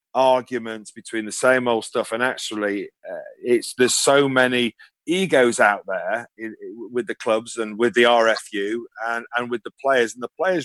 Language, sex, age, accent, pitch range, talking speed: English, male, 40-59, British, 110-140 Hz, 175 wpm